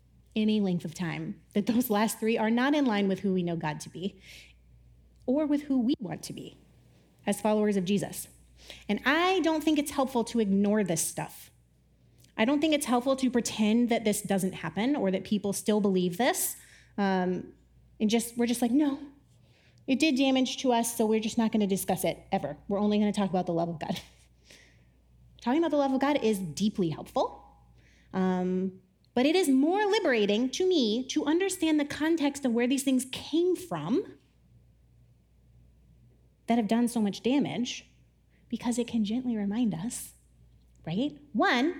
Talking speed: 185 wpm